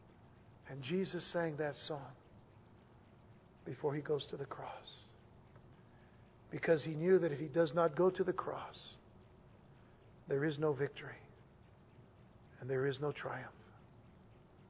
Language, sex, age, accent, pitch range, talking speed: English, male, 50-69, American, 120-155 Hz, 130 wpm